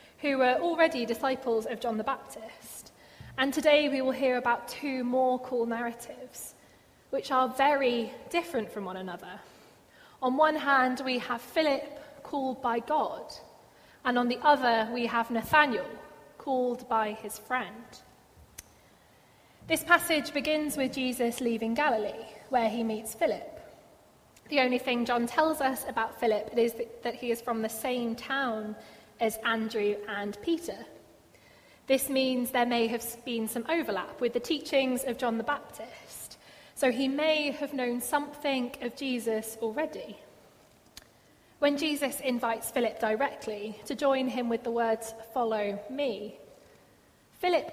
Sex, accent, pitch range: female, British, 230-280 Hz